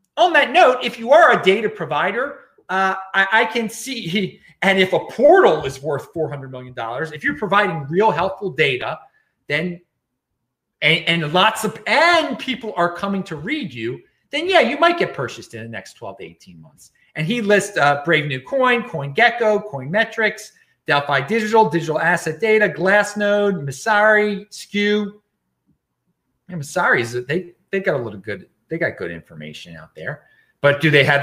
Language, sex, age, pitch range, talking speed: English, male, 40-59, 145-215 Hz, 180 wpm